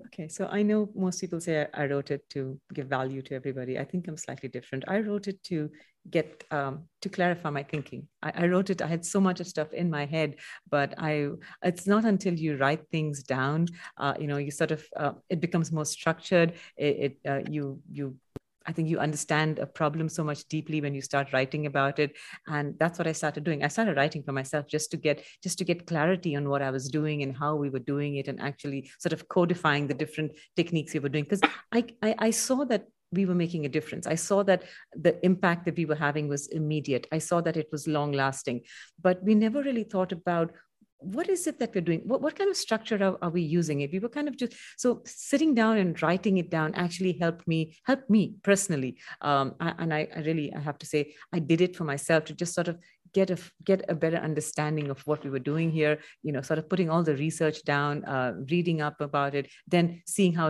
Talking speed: 235 wpm